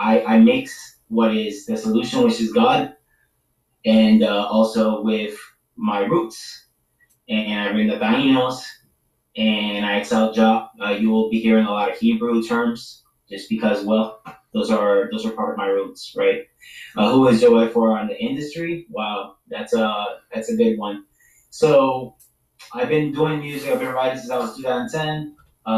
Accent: American